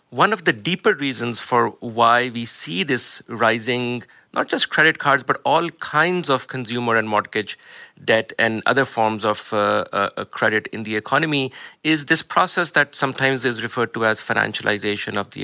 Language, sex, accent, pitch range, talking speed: English, male, Indian, 115-145 Hz, 175 wpm